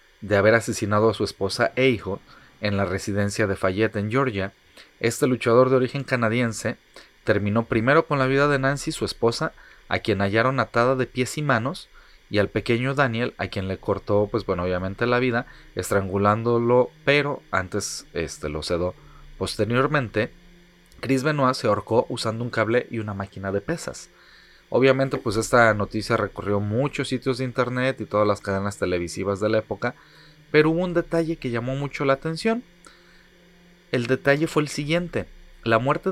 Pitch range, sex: 105-145 Hz, male